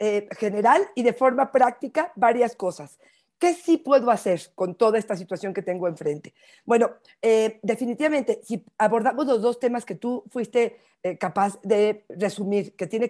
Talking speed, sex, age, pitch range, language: 165 wpm, female, 40-59, 205-260 Hz, Spanish